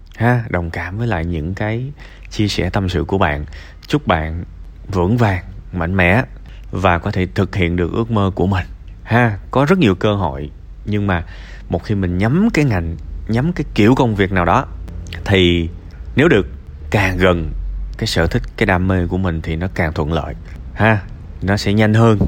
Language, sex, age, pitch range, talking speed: Vietnamese, male, 20-39, 85-115 Hz, 195 wpm